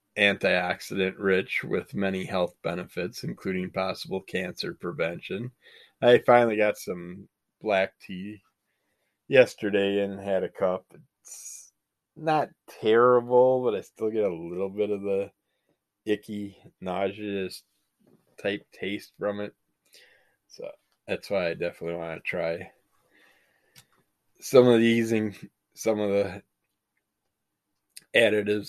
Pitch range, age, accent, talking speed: 95-110 Hz, 20-39, American, 110 wpm